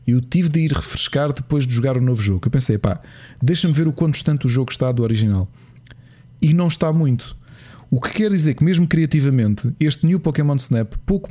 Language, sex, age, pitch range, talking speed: Portuguese, male, 20-39, 125-150 Hz, 210 wpm